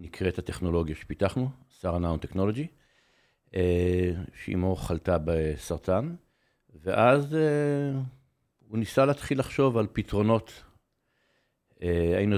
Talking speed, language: 80 wpm, Hebrew